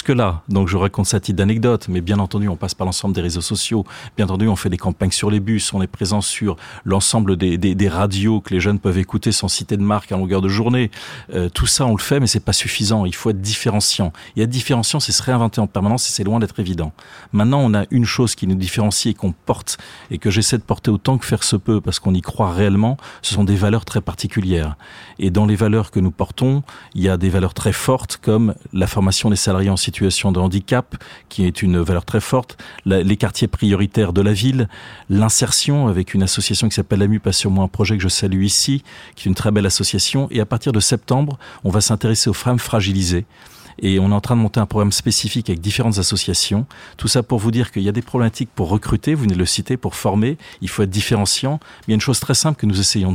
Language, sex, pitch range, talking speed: French, male, 95-115 Hz, 250 wpm